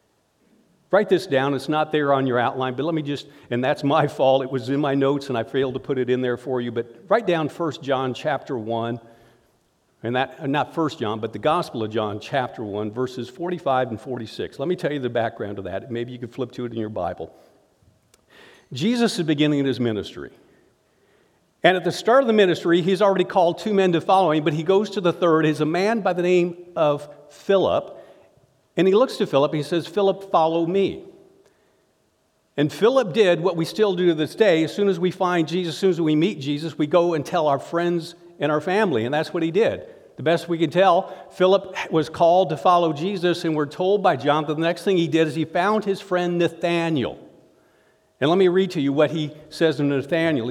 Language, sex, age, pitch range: English, male, 50-69, 135-185 Hz